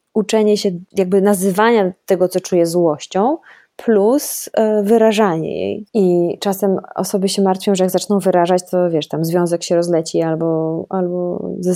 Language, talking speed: Polish, 150 wpm